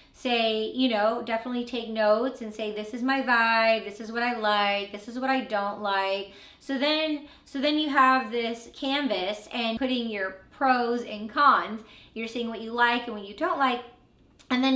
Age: 20-39